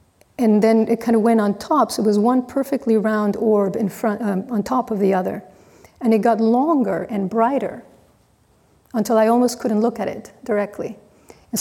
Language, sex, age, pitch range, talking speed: English, female, 40-59, 190-225 Hz, 195 wpm